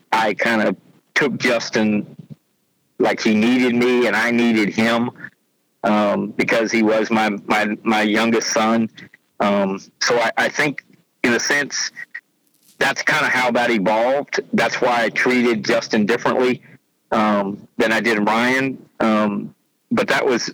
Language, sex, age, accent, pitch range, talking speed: English, male, 50-69, American, 105-115 Hz, 150 wpm